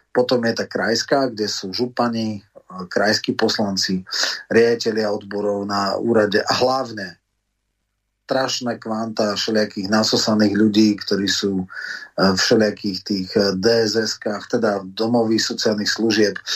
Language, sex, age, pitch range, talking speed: Slovak, male, 30-49, 105-120 Hz, 110 wpm